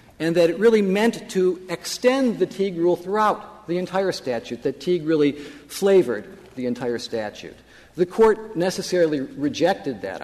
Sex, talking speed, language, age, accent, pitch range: male, 150 wpm, English, 50-69, American, 130-185 Hz